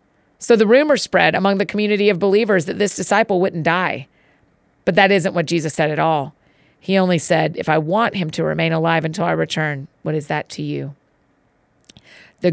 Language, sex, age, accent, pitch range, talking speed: English, female, 40-59, American, 160-205 Hz, 195 wpm